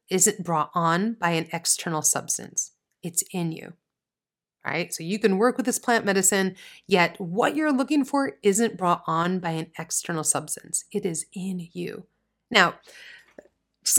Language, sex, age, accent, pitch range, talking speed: English, female, 30-49, American, 165-225 Hz, 165 wpm